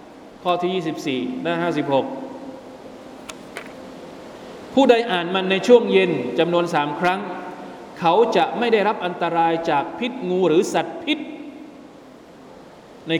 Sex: male